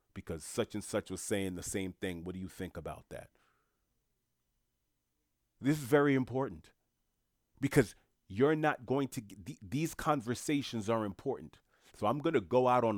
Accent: American